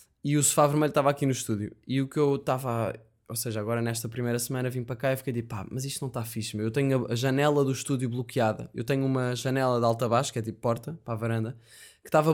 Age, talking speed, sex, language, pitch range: 20-39, 265 wpm, male, Portuguese, 115-150 Hz